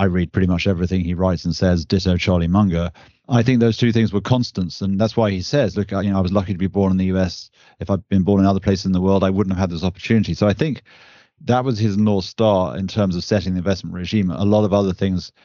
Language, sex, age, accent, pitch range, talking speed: English, male, 30-49, British, 90-105 Hz, 285 wpm